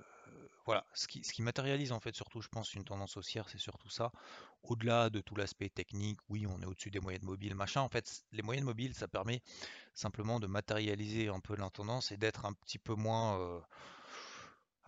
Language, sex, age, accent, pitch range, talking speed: French, male, 30-49, French, 100-115 Hz, 200 wpm